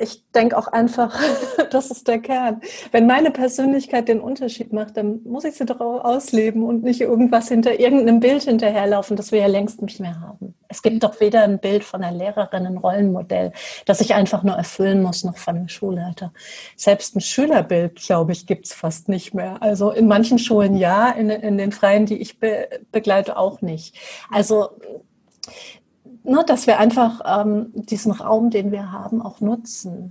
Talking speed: 185 wpm